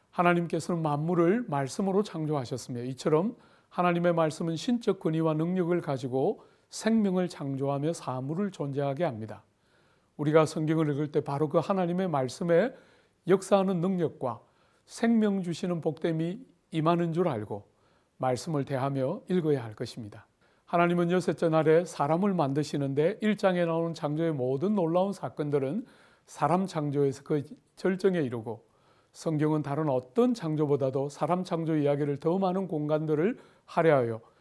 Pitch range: 140-180 Hz